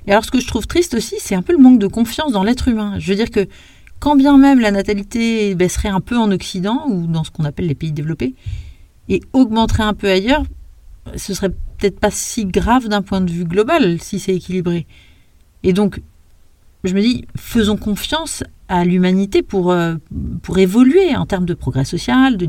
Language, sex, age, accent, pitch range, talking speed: French, female, 40-59, French, 170-220 Hz, 205 wpm